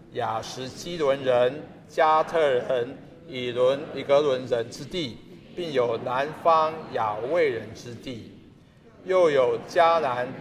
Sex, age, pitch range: male, 50-69, 130-175 Hz